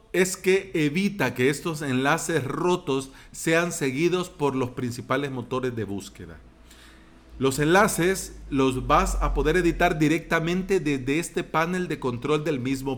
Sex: male